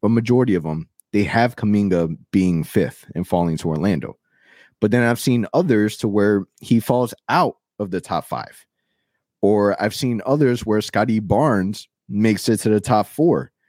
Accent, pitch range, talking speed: American, 85-110 Hz, 175 wpm